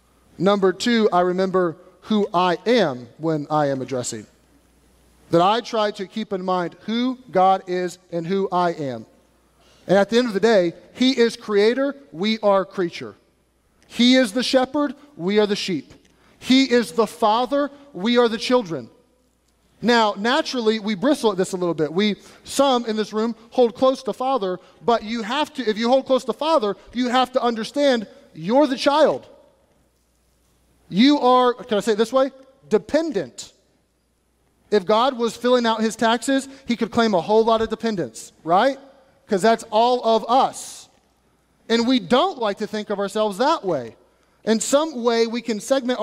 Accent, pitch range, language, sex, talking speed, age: American, 195-250 Hz, English, male, 175 wpm, 30-49